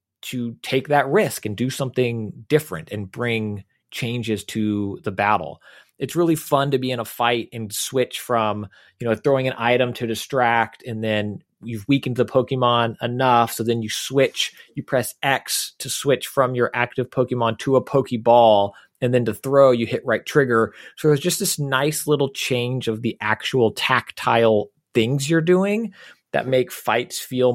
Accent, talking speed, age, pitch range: American, 175 wpm, 30-49, 105-130 Hz